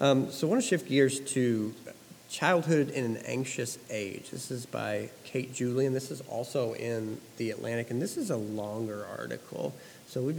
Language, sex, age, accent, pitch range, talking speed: English, male, 40-59, American, 115-135 Hz, 185 wpm